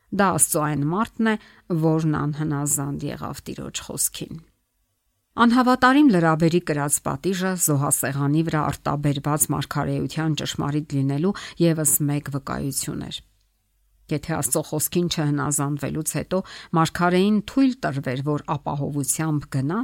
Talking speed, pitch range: 85 wpm, 145-180 Hz